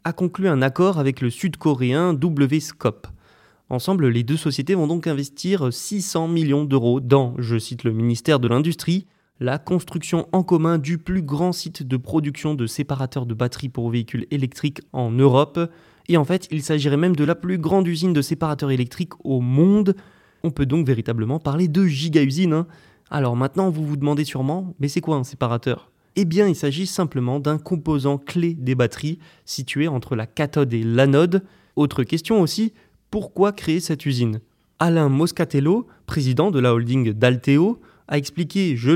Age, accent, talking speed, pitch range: 20-39, French, 175 wpm, 130-170 Hz